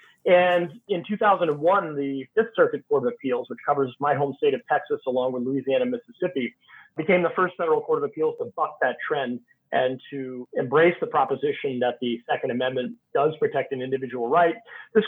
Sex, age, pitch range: male, 40-59, 140-235 Hz